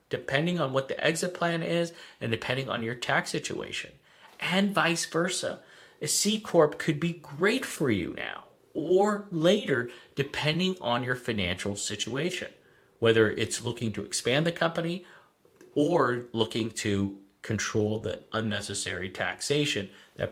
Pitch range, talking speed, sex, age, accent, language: 115-170 Hz, 135 wpm, male, 50-69, American, English